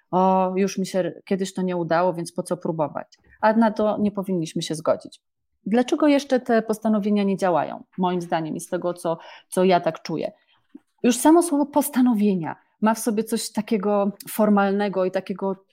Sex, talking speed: female, 180 wpm